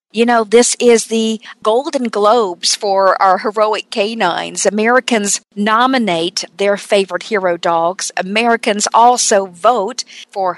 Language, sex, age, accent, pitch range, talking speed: English, female, 50-69, American, 185-230 Hz, 120 wpm